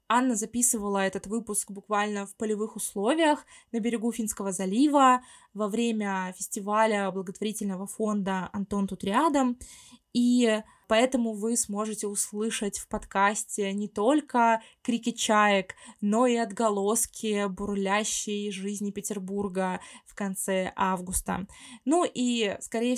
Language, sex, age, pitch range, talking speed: Russian, female, 20-39, 195-235 Hz, 110 wpm